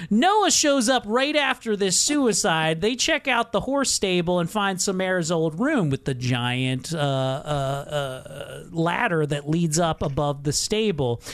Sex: male